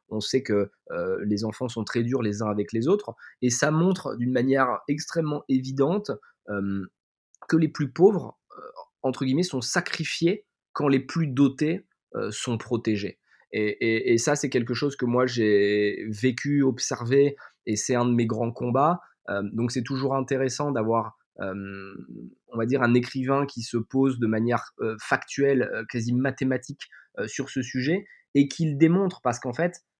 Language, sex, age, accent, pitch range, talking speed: French, male, 20-39, French, 115-145 Hz, 175 wpm